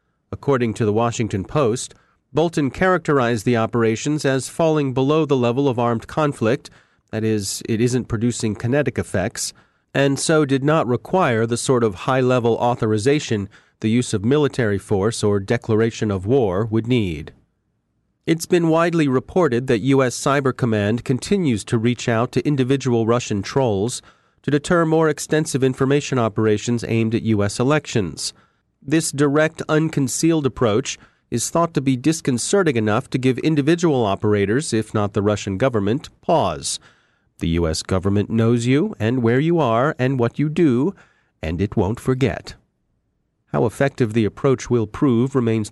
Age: 40-59